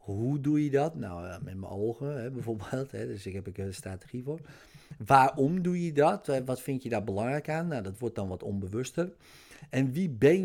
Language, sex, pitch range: Dutch, male, 110-145 Hz